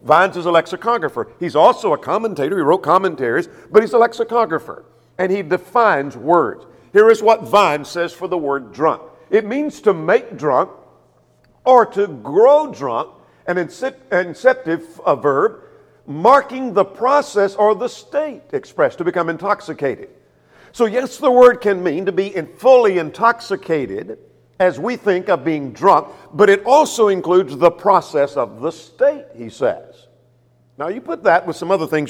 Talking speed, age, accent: 160 wpm, 50-69, American